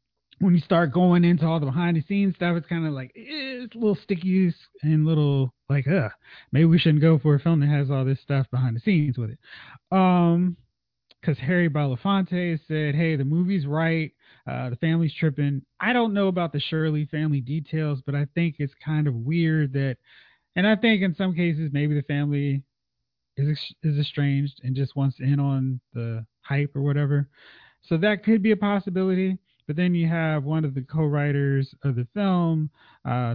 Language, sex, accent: English, male, American